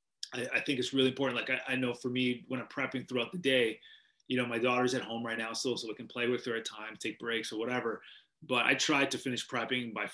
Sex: male